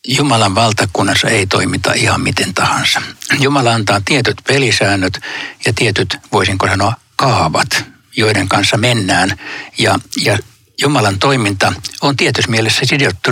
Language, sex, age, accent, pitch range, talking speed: Finnish, male, 60-79, native, 110-135 Hz, 120 wpm